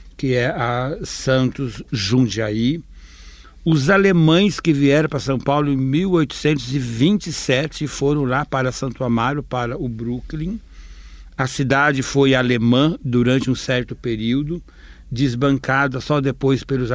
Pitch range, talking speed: 120-145 Hz, 120 wpm